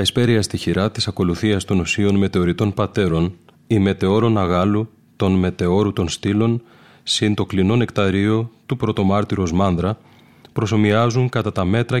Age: 30-49